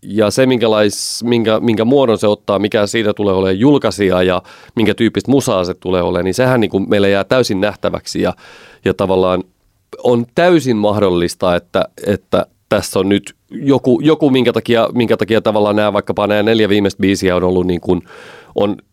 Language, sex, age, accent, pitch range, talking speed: Finnish, male, 30-49, native, 95-115 Hz, 170 wpm